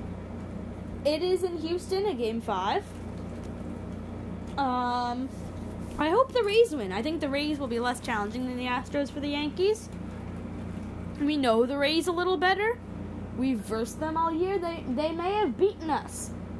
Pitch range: 245-360 Hz